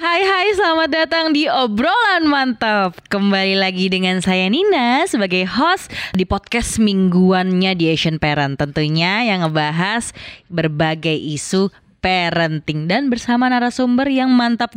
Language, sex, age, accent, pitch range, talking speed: Indonesian, female, 20-39, native, 160-235 Hz, 125 wpm